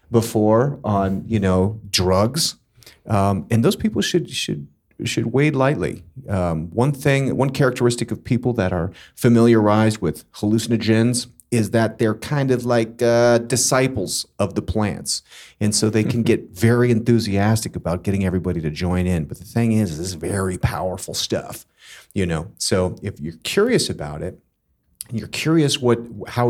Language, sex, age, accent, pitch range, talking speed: English, male, 40-59, American, 95-120 Hz, 160 wpm